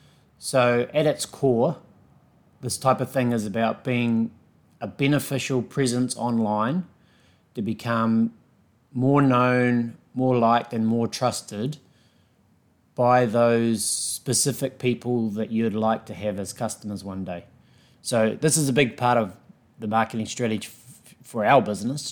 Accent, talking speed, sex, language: Australian, 135 wpm, male, English